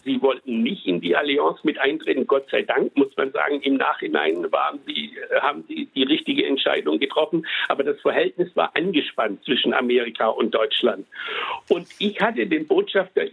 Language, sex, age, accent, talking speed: German, male, 60-79, German, 170 wpm